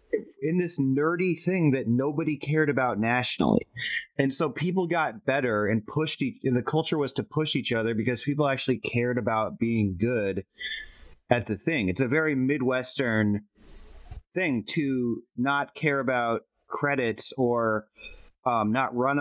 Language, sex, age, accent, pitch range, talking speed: English, male, 30-49, American, 115-150 Hz, 150 wpm